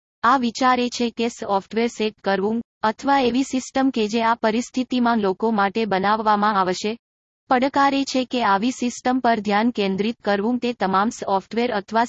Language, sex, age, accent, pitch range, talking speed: Gujarati, female, 20-39, native, 205-245 Hz, 155 wpm